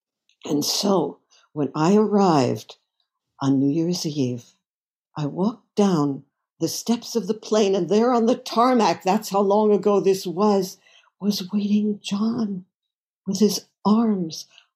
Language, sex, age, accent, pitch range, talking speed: English, female, 60-79, American, 155-220 Hz, 140 wpm